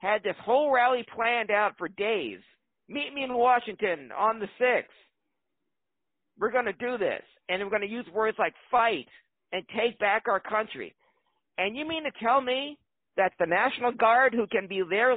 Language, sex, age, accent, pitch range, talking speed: English, male, 50-69, American, 215-275 Hz, 185 wpm